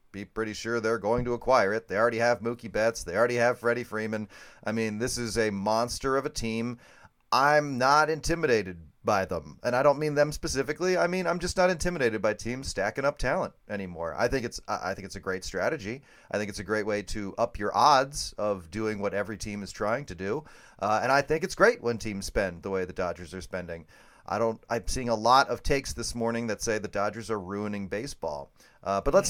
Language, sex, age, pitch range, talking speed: English, male, 30-49, 105-150 Hz, 230 wpm